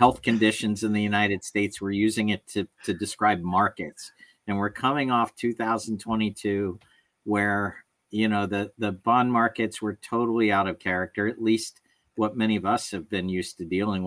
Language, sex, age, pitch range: English, male, 50-69, 95-115 Hz